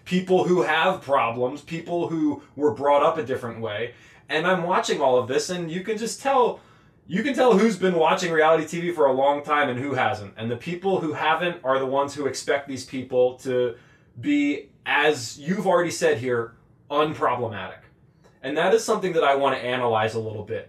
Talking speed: 205 wpm